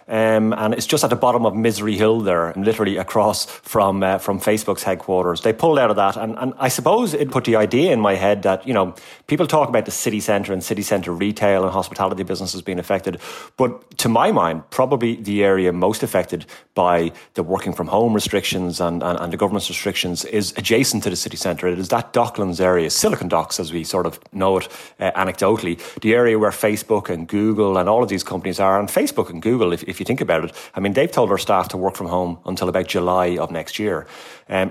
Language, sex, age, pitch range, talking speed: English, male, 30-49, 90-110 Hz, 235 wpm